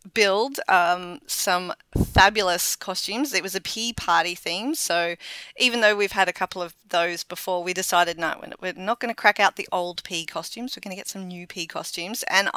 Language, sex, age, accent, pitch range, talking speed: English, female, 30-49, Australian, 170-215 Hz, 205 wpm